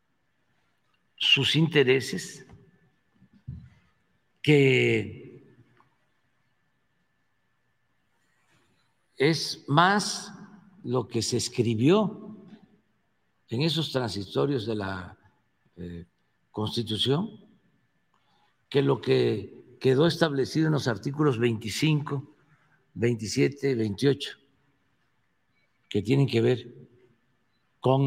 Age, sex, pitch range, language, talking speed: 60-79, male, 120-165 Hz, Spanish, 70 wpm